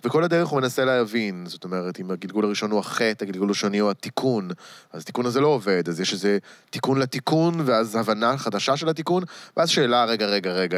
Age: 20-39